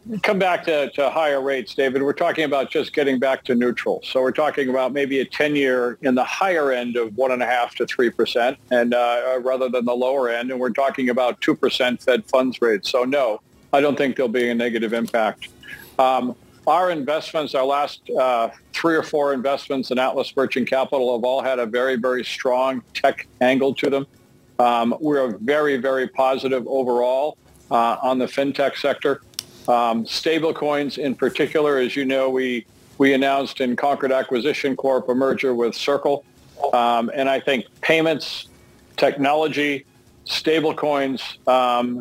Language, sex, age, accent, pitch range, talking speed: English, male, 50-69, American, 120-140 Hz, 165 wpm